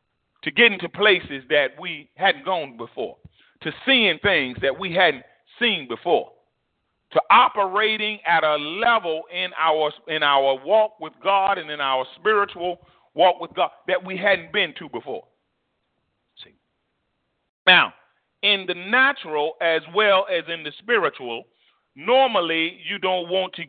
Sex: male